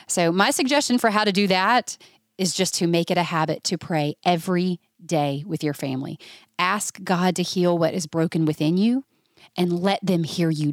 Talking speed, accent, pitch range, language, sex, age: 200 wpm, American, 160-200 Hz, English, female, 30-49